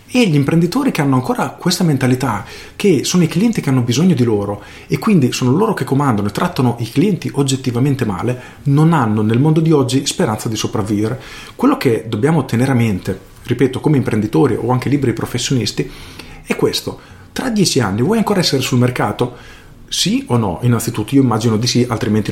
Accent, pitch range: native, 115-160 Hz